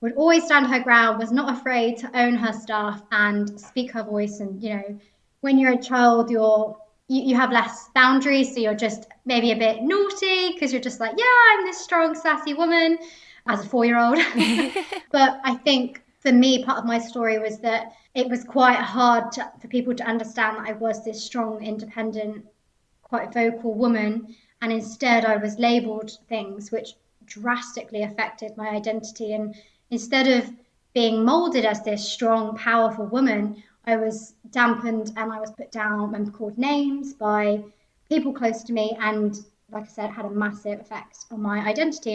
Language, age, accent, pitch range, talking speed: English, 20-39, British, 215-250 Hz, 180 wpm